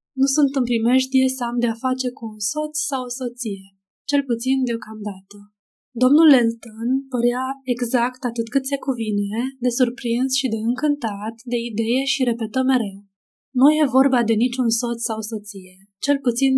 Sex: female